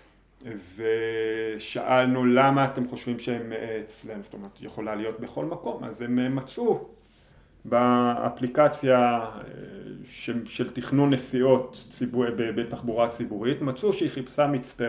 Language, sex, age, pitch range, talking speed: Hebrew, male, 30-49, 115-130 Hz, 110 wpm